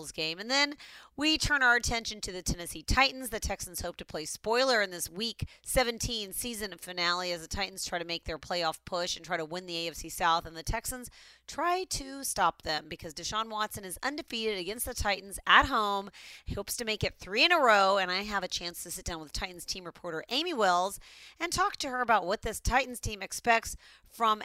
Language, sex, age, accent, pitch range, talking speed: English, female, 30-49, American, 175-250 Hz, 220 wpm